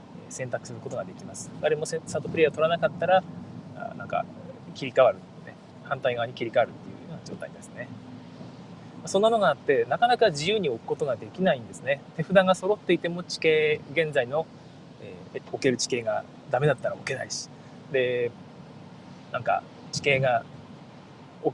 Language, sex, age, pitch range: Japanese, male, 20-39, 145-190 Hz